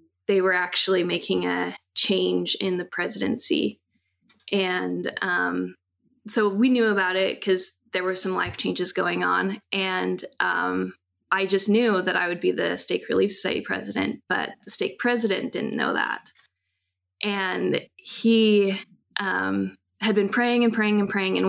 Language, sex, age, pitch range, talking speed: English, female, 20-39, 180-210 Hz, 155 wpm